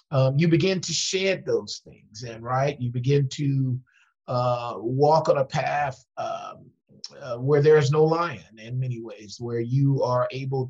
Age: 50-69